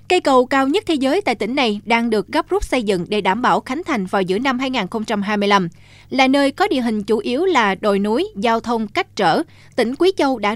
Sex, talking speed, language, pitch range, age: female, 240 wpm, Vietnamese, 215-290 Hz, 20-39